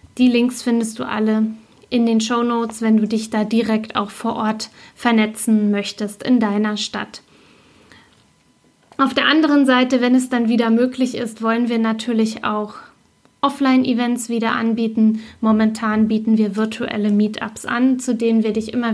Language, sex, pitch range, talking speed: German, female, 220-245 Hz, 155 wpm